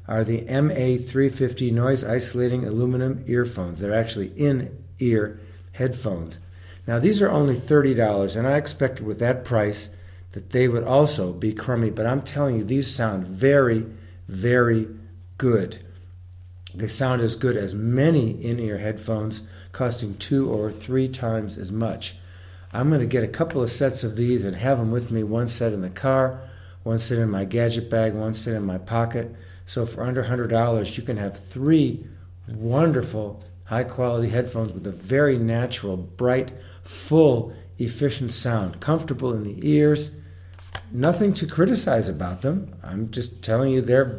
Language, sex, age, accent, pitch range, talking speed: English, male, 50-69, American, 100-130 Hz, 155 wpm